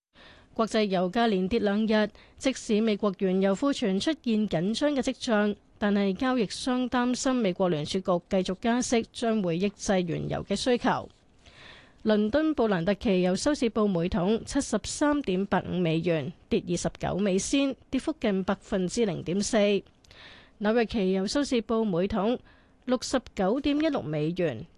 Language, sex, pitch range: Chinese, female, 185-240 Hz